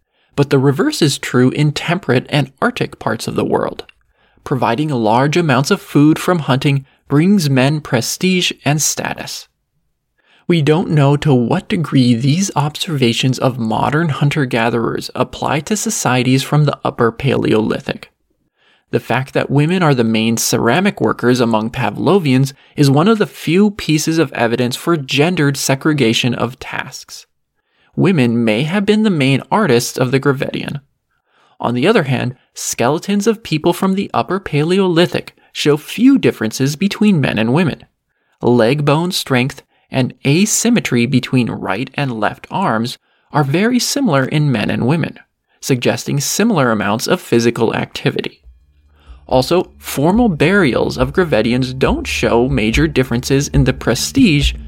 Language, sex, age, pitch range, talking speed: English, male, 20-39, 120-165 Hz, 145 wpm